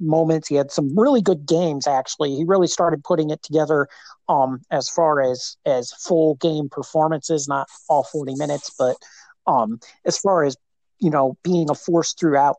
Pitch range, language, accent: 135-165 Hz, English, American